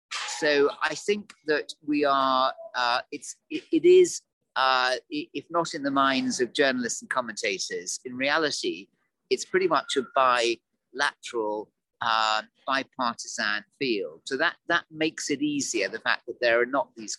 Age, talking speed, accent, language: 40-59, 155 wpm, British, English